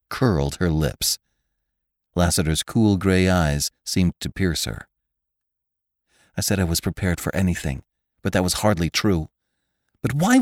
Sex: male